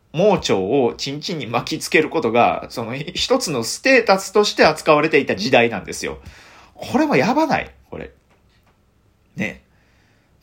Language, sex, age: Japanese, male, 40-59